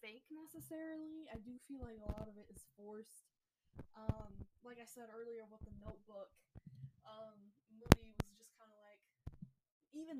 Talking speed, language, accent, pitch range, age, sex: 160 wpm, English, American, 205-230 Hz, 10-29, female